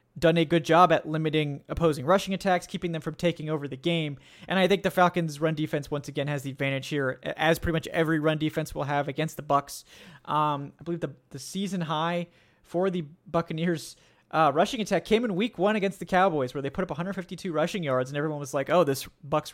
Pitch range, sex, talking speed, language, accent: 145-180 Hz, male, 225 wpm, English, American